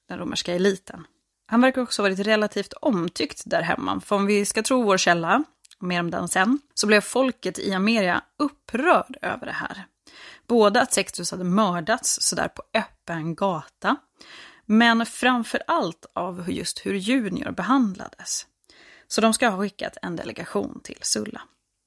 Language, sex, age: Swedish, female, 20-39